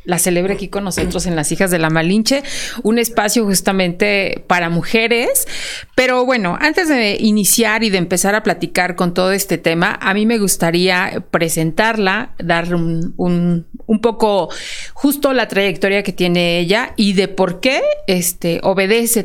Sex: female